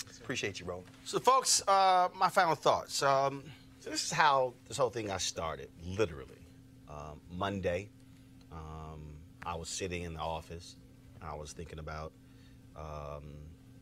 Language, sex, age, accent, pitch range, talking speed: English, male, 40-59, American, 85-130 Hz, 150 wpm